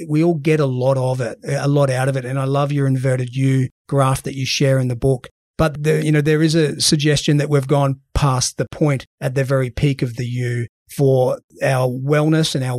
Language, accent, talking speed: English, Australian, 240 wpm